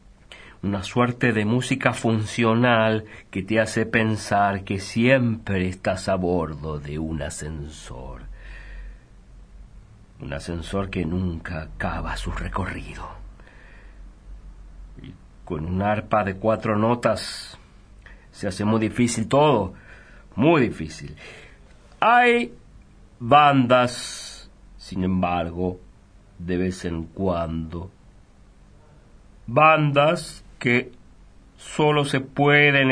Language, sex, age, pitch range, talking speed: Spanish, male, 50-69, 90-120 Hz, 90 wpm